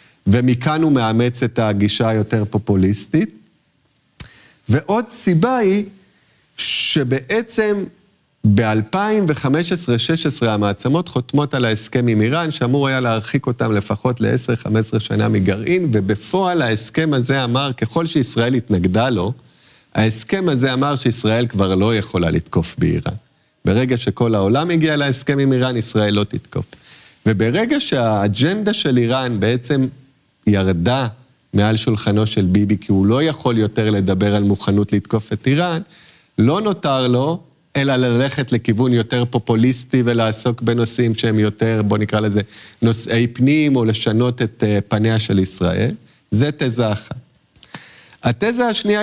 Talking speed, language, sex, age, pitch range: 125 wpm, Hebrew, male, 40-59, 110-140 Hz